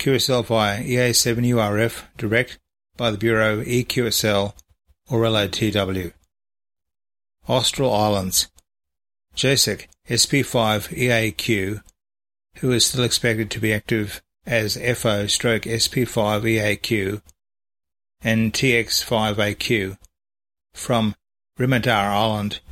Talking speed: 75 wpm